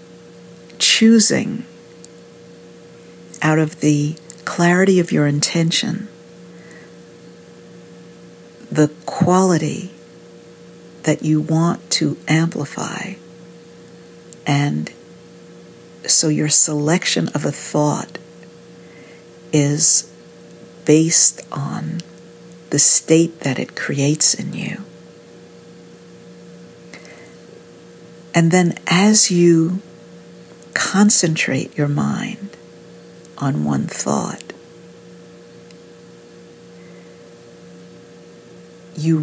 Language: English